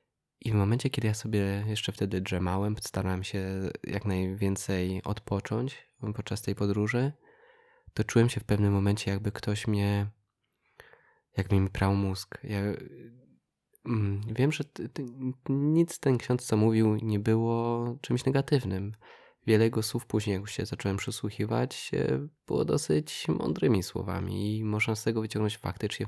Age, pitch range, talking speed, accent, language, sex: 20-39, 100-120 Hz, 145 wpm, native, Polish, male